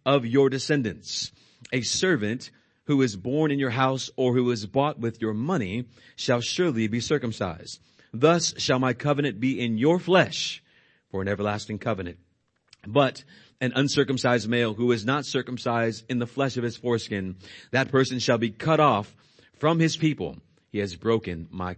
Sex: male